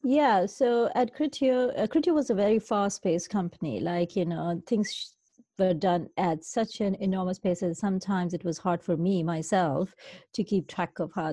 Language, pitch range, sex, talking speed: English, 170-205 Hz, female, 185 wpm